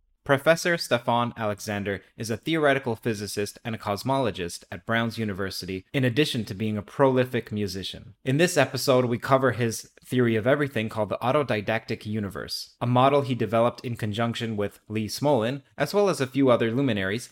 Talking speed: 170 wpm